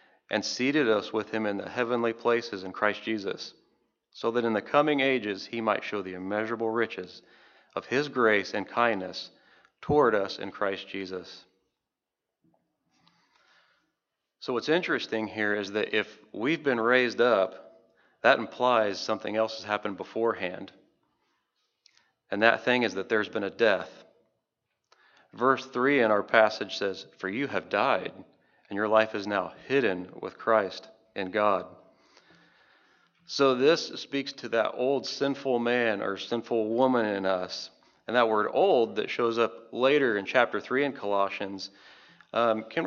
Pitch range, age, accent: 100-120 Hz, 40-59, American